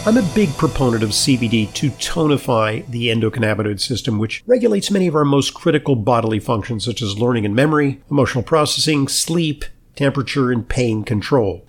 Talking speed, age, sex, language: 165 wpm, 50-69, male, English